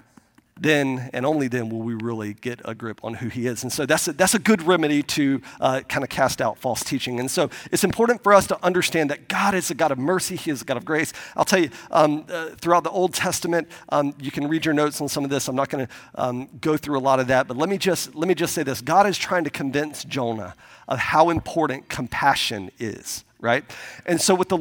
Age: 40-59